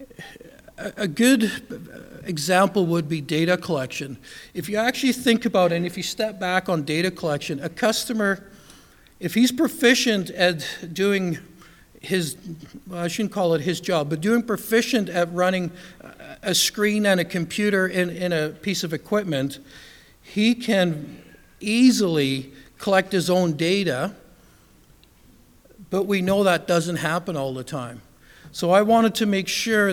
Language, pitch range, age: English, 160-200 Hz, 50-69